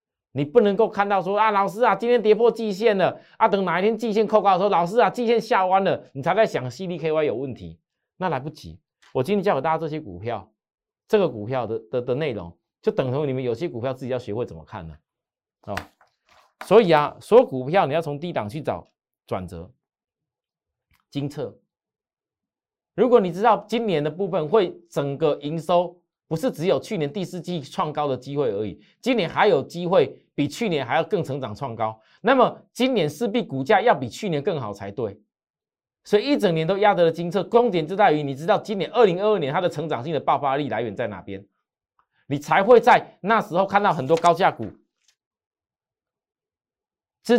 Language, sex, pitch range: Chinese, male, 140-210 Hz